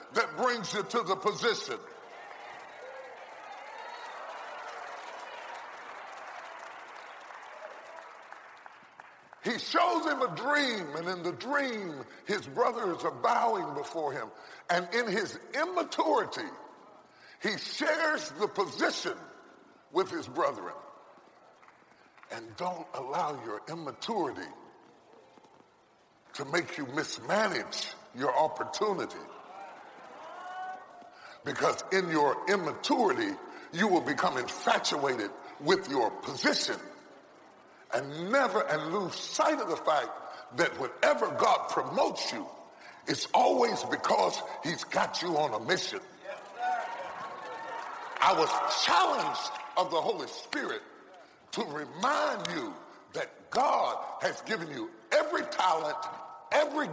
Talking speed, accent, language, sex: 100 wpm, American, English, female